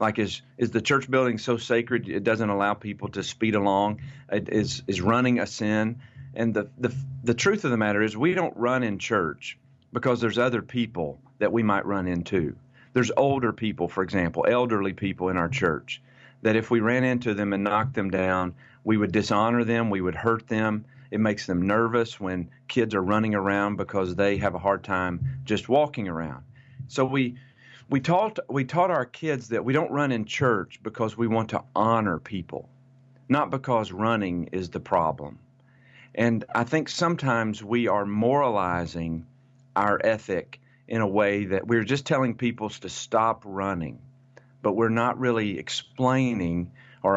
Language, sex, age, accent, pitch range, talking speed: English, male, 40-59, American, 100-130 Hz, 180 wpm